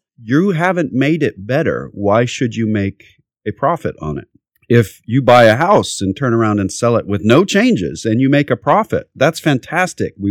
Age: 40-59